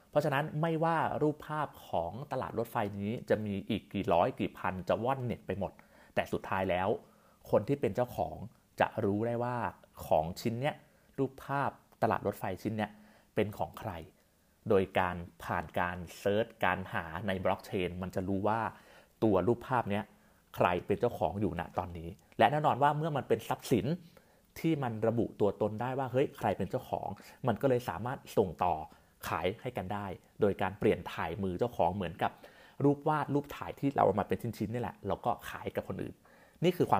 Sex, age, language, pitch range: male, 30-49, Thai, 95-125 Hz